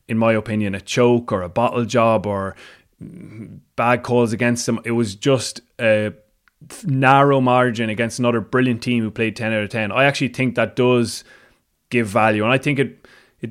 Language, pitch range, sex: English, 110-130 Hz, male